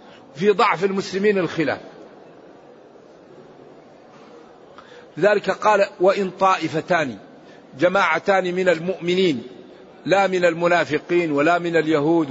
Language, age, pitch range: Arabic, 50-69, 175-215 Hz